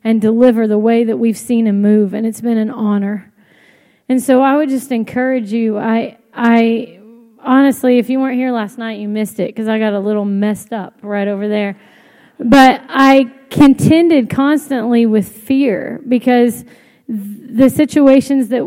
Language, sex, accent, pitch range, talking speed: English, female, American, 215-255 Hz, 170 wpm